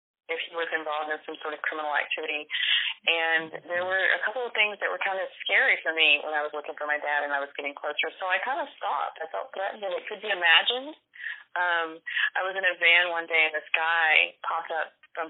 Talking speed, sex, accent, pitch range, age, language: 245 wpm, female, American, 155-185 Hz, 30-49, English